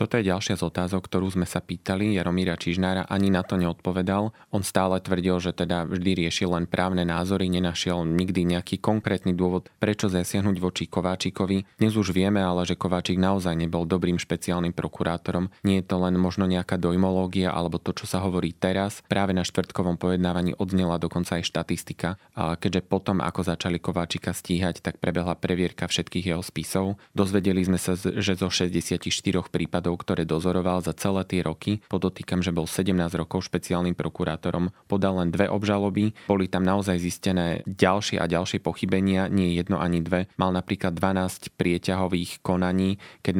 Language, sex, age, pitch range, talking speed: Slovak, male, 20-39, 85-95 Hz, 165 wpm